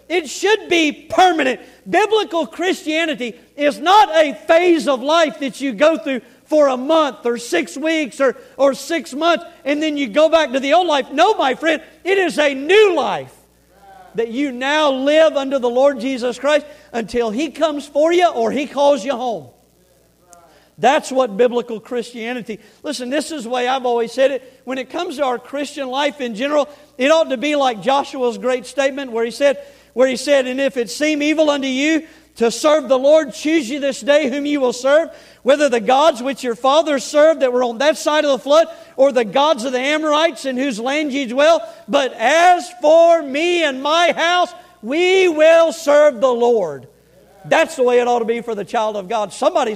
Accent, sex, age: American, male, 50-69